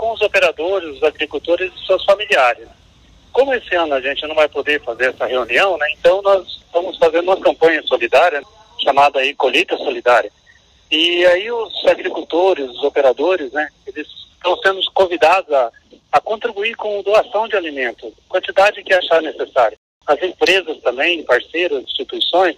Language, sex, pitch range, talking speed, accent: Portuguese, male, 155-200 Hz, 155 wpm, Brazilian